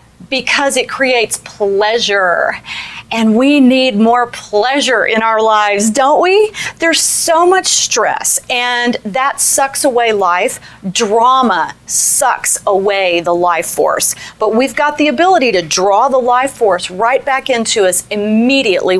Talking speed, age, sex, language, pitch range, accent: 140 wpm, 40-59, female, English, 205-270 Hz, American